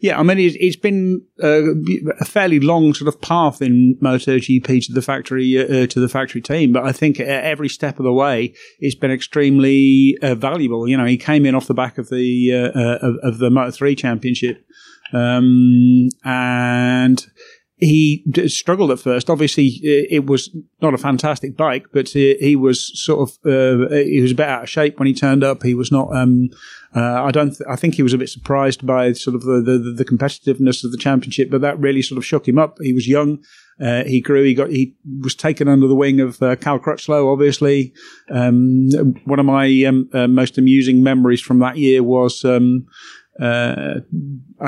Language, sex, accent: English, male, British